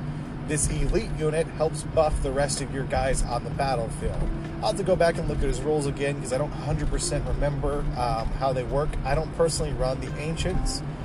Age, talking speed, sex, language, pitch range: 30-49, 210 wpm, male, English, 130-155 Hz